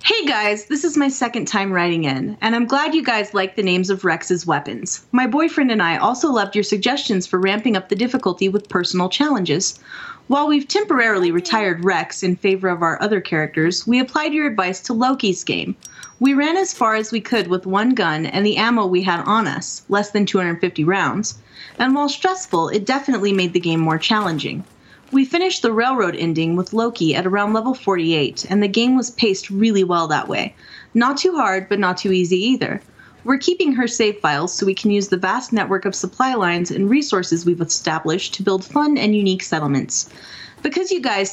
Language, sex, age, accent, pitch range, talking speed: English, female, 30-49, American, 185-255 Hz, 205 wpm